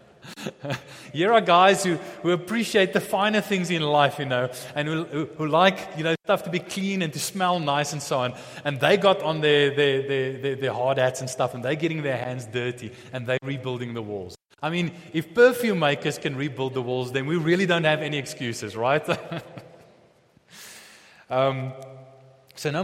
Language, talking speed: English, 195 wpm